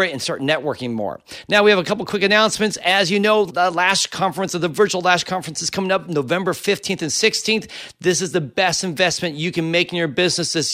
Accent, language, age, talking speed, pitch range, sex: American, English, 40-59, 235 wpm, 155-190 Hz, male